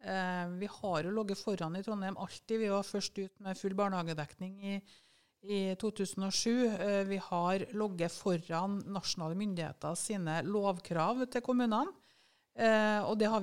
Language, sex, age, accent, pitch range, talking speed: English, female, 50-69, Swedish, 170-205 Hz, 140 wpm